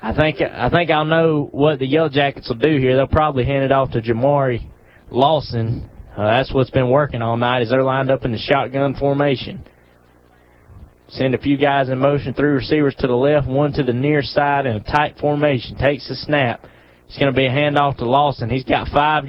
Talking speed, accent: 220 wpm, American